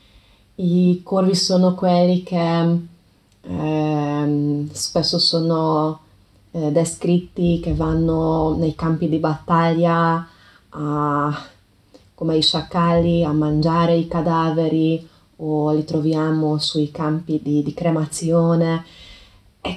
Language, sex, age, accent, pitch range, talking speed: Italian, female, 20-39, native, 155-185 Hz, 100 wpm